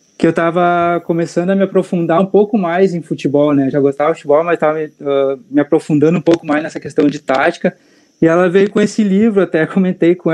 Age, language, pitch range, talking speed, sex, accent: 20-39, Portuguese, 140-165 Hz, 225 wpm, male, Brazilian